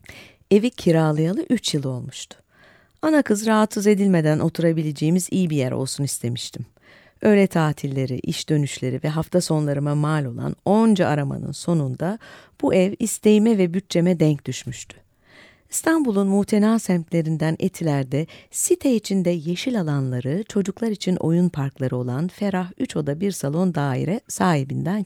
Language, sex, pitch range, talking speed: Turkish, female, 140-195 Hz, 130 wpm